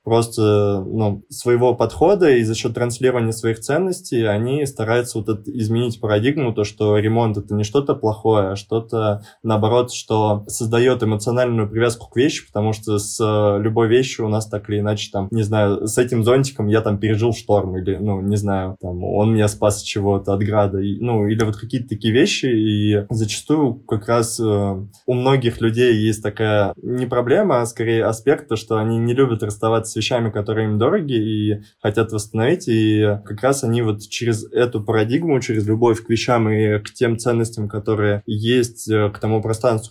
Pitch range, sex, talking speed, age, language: 105-120 Hz, male, 180 wpm, 20-39, Russian